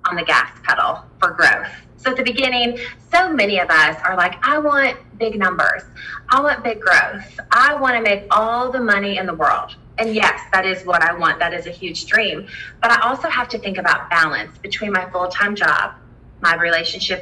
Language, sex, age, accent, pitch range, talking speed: English, female, 30-49, American, 165-205 Hz, 205 wpm